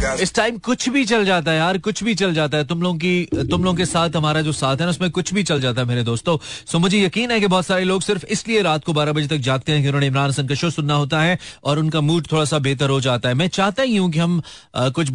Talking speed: 285 wpm